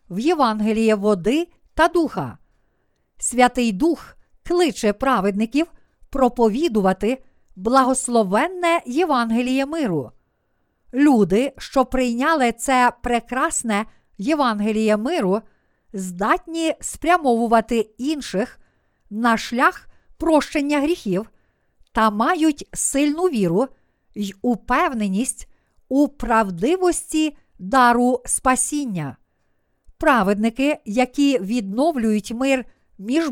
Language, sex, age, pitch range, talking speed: Ukrainian, female, 50-69, 215-290 Hz, 75 wpm